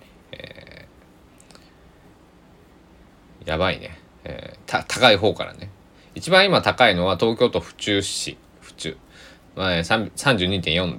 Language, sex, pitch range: Japanese, male, 85-105 Hz